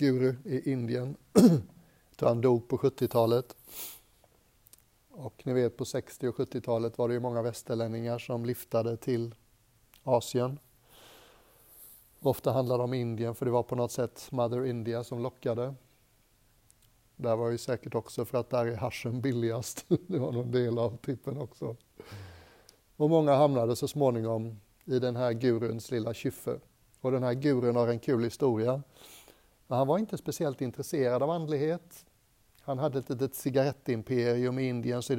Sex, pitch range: male, 115-135 Hz